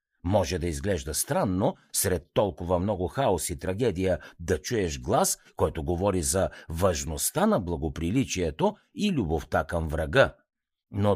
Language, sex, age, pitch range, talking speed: Bulgarian, male, 60-79, 85-125 Hz, 130 wpm